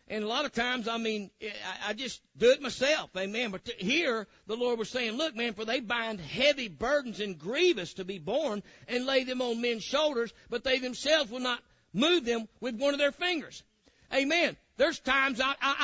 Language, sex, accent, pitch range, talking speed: English, male, American, 190-270 Hz, 200 wpm